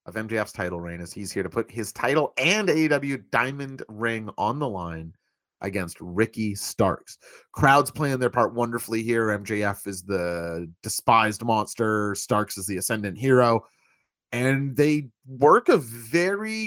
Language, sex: English, male